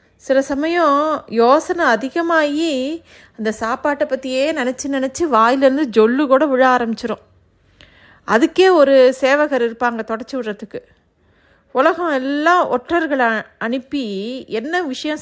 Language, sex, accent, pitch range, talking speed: Tamil, female, native, 225-285 Hz, 105 wpm